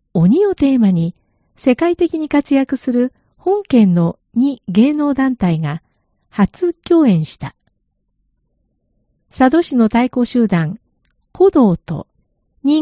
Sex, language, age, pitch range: female, Japanese, 50-69, 180-280 Hz